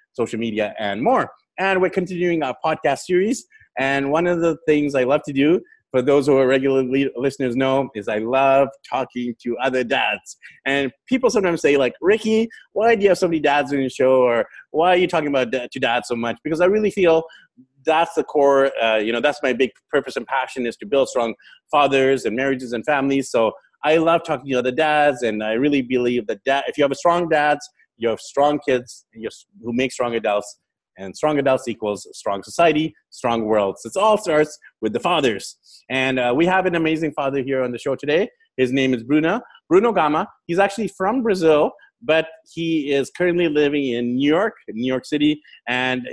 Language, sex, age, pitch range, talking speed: English, male, 30-49, 130-165 Hz, 210 wpm